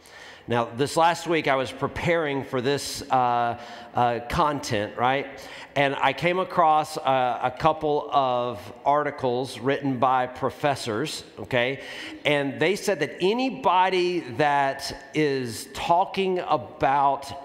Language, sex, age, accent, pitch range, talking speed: English, male, 40-59, American, 120-160 Hz, 120 wpm